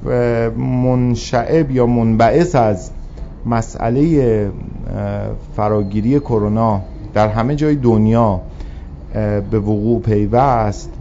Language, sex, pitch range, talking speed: Persian, male, 100-125 Hz, 75 wpm